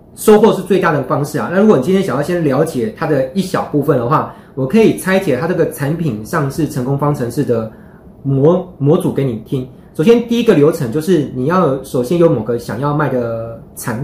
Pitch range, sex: 135-185 Hz, male